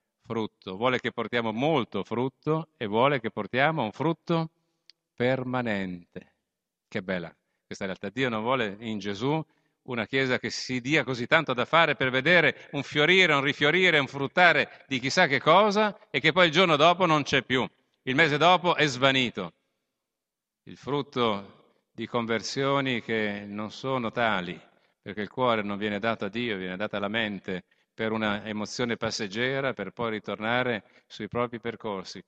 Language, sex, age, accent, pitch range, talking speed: Italian, male, 40-59, native, 115-155 Hz, 165 wpm